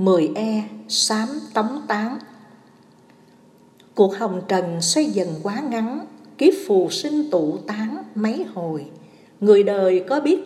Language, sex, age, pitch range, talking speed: Vietnamese, female, 60-79, 165-265 Hz, 130 wpm